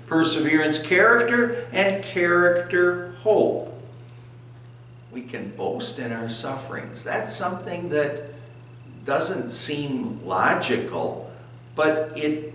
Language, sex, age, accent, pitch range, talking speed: English, male, 60-79, American, 120-175 Hz, 90 wpm